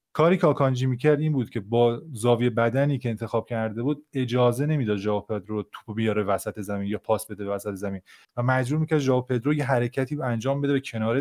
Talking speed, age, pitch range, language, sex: 205 wpm, 30-49, 105-135 Hz, Persian, male